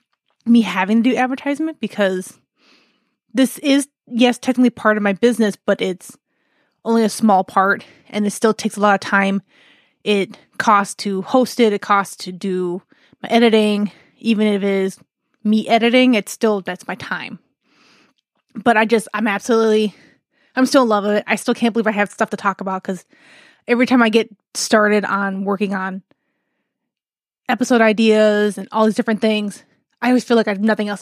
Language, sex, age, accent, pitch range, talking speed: English, female, 20-39, American, 205-250 Hz, 185 wpm